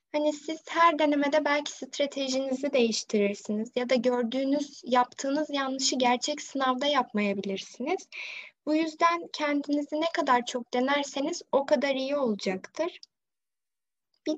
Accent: native